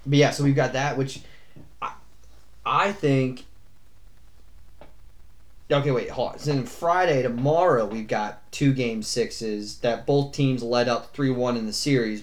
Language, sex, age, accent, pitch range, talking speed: English, male, 30-49, American, 105-130 Hz, 160 wpm